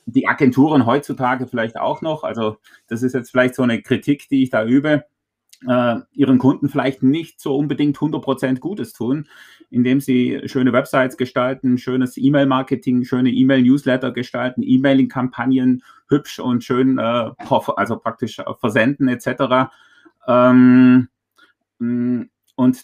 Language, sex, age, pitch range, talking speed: German, male, 30-49, 125-140 Hz, 130 wpm